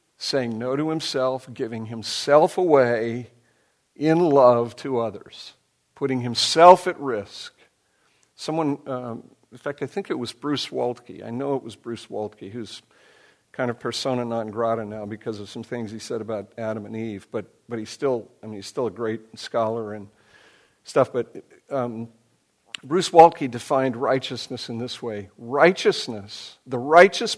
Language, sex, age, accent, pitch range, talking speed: English, male, 50-69, American, 110-135 Hz, 160 wpm